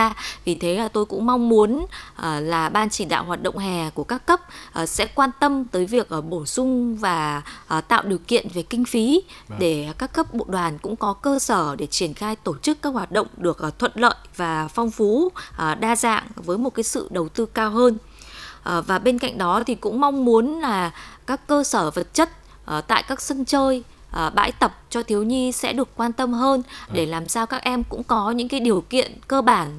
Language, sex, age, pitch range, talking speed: Vietnamese, female, 20-39, 175-250 Hz, 210 wpm